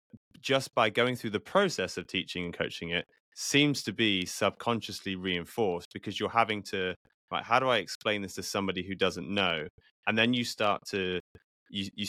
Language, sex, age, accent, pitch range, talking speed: English, male, 20-39, British, 90-110 Hz, 190 wpm